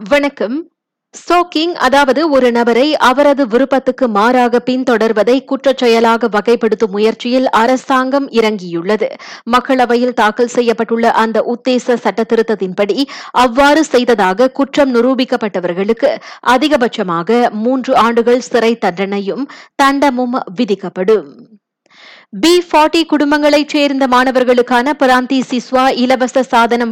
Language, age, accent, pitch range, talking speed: Tamil, 20-39, native, 225-270 Hz, 90 wpm